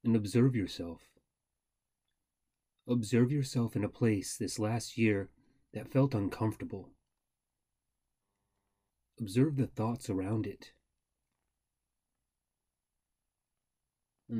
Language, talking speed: English, 85 wpm